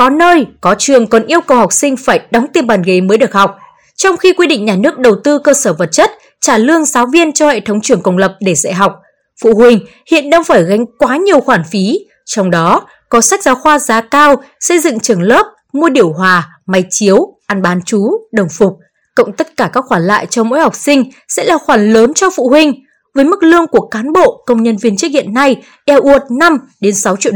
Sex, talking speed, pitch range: female, 240 wpm, 205-290 Hz